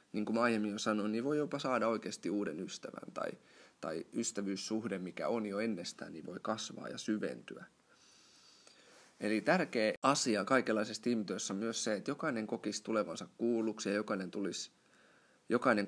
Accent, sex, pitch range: native, male, 100-120 Hz